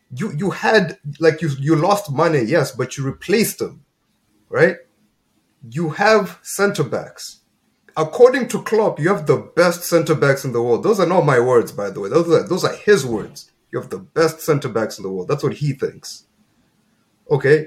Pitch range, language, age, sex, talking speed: 135-180 Hz, English, 30-49, male, 195 wpm